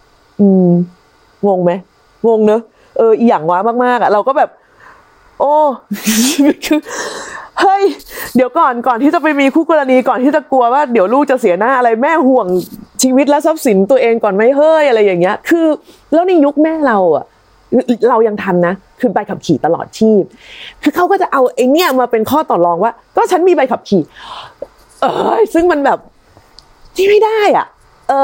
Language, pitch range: Thai, 195-275 Hz